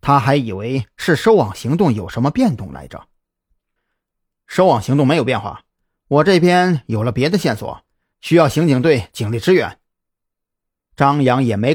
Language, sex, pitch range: Chinese, male, 120-180 Hz